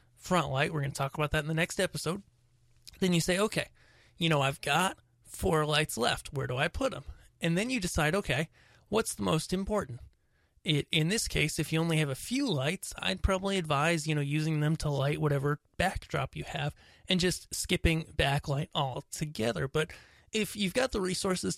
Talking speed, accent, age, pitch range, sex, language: 200 wpm, American, 30-49, 145-180 Hz, male, English